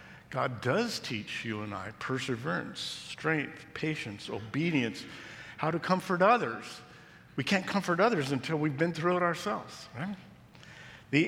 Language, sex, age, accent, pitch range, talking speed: English, male, 50-69, American, 120-160 Hz, 140 wpm